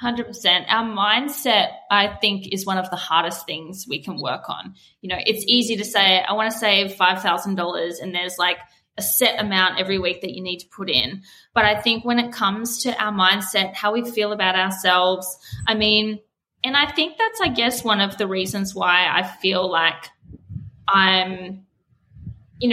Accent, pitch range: Australian, 185-225 Hz